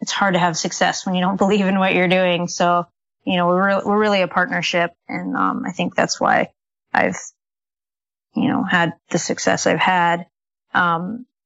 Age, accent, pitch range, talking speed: 30-49, American, 170-190 Hz, 195 wpm